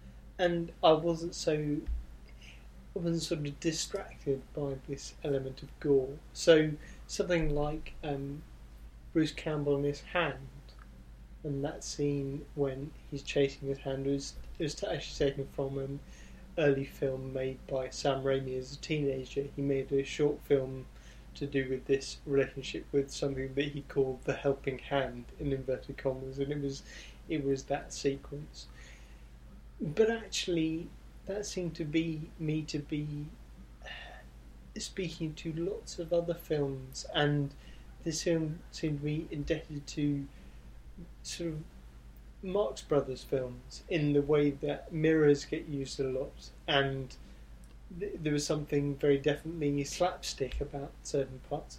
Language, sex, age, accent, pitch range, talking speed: English, male, 20-39, British, 130-155 Hz, 145 wpm